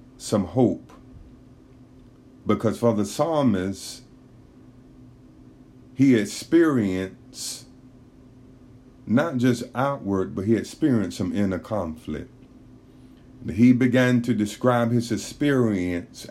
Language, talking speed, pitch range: English, 85 wpm, 105-130 Hz